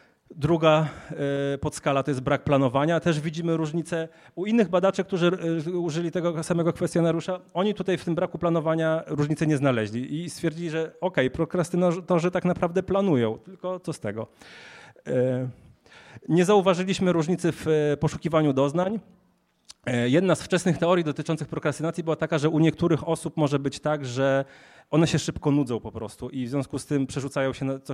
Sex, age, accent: male, 30-49, native